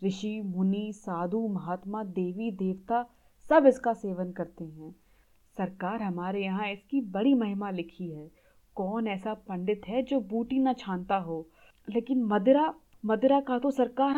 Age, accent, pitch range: 30-49, native, 190-260 Hz